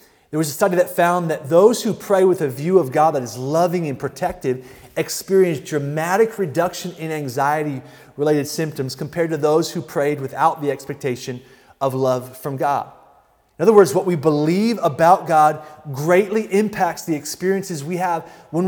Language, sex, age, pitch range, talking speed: English, male, 30-49, 160-210 Hz, 170 wpm